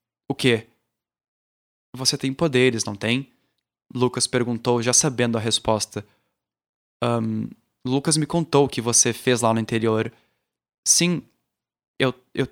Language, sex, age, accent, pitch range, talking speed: Portuguese, male, 20-39, Brazilian, 120-145 Hz, 125 wpm